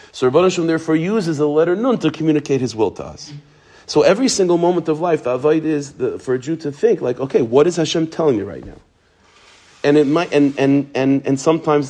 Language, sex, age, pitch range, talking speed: English, male, 40-59, 125-155 Hz, 230 wpm